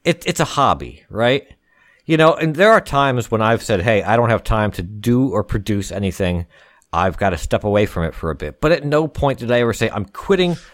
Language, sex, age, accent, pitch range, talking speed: English, male, 50-69, American, 100-140 Hz, 245 wpm